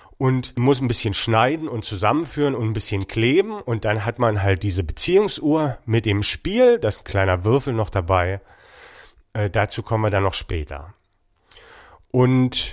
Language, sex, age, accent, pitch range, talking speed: German, male, 40-59, German, 105-135 Hz, 170 wpm